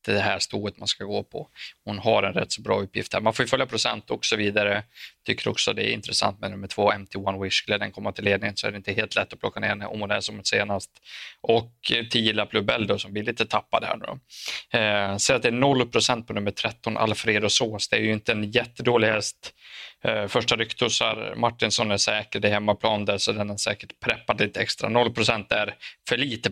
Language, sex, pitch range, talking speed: Swedish, male, 100-120 Hz, 225 wpm